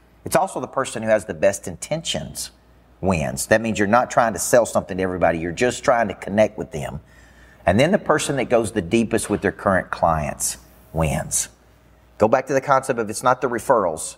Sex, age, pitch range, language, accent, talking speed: male, 40-59, 95-125 Hz, English, American, 210 wpm